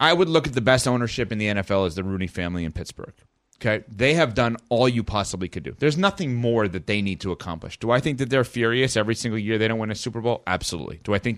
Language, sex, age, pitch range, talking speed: English, male, 30-49, 110-145 Hz, 275 wpm